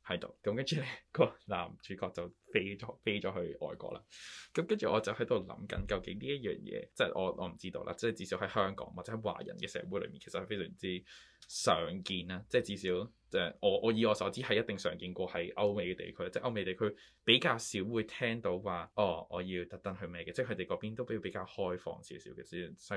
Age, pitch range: 20-39, 90-115 Hz